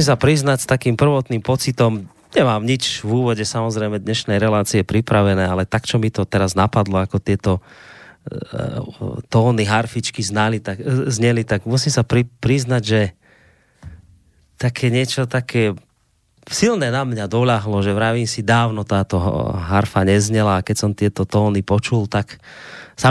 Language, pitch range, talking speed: Slovak, 100-120 Hz, 140 wpm